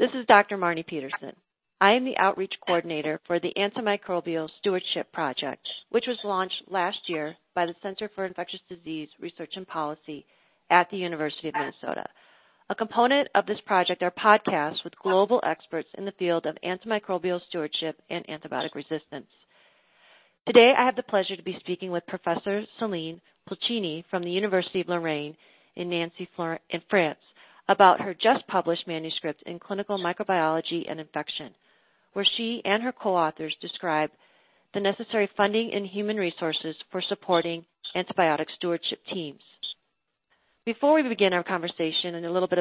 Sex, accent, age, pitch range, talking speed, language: female, American, 40-59, 165-200 Hz, 155 wpm, English